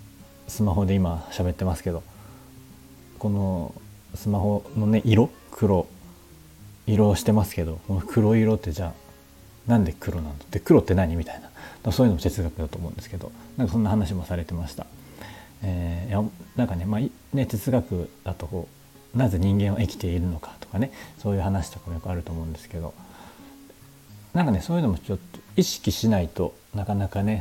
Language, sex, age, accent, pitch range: Japanese, male, 40-59, native, 90-110 Hz